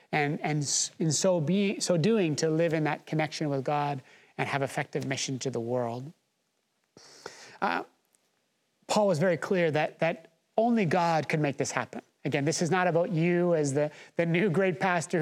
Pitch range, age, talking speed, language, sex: 160-225 Hz, 30-49, 180 wpm, English, male